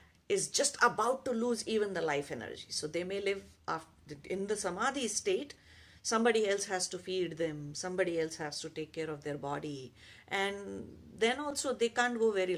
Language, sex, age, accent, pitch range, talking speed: English, female, 50-69, Indian, 155-240 Hz, 190 wpm